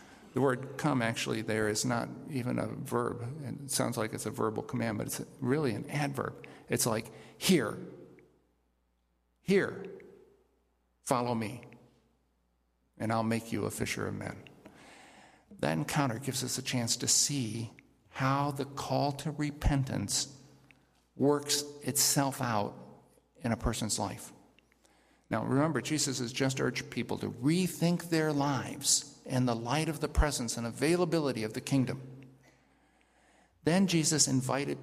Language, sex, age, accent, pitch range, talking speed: English, male, 50-69, American, 120-150 Hz, 140 wpm